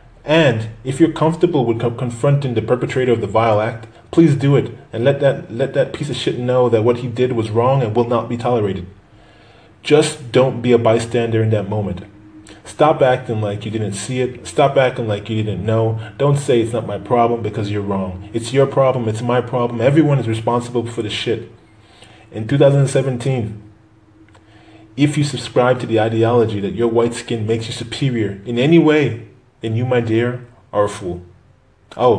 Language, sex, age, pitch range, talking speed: English, male, 20-39, 105-125 Hz, 190 wpm